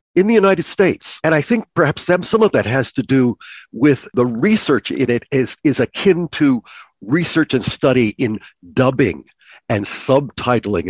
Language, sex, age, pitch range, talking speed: English, male, 60-79, 110-140 Hz, 165 wpm